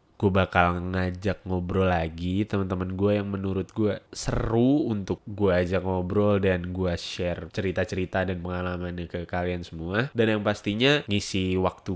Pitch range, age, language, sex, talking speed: 90-105 Hz, 10-29, Indonesian, male, 145 wpm